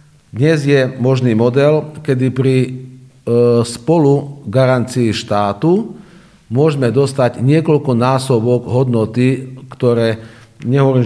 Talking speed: 90 wpm